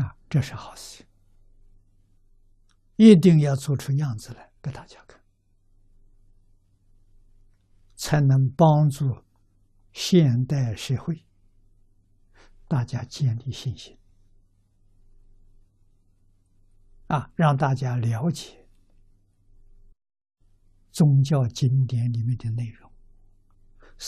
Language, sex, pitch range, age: Chinese, male, 100-130 Hz, 60-79